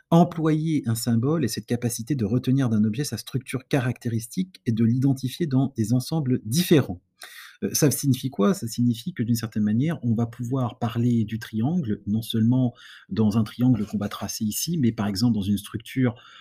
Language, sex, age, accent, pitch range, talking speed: English, male, 30-49, French, 110-140 Hz, 185 wpm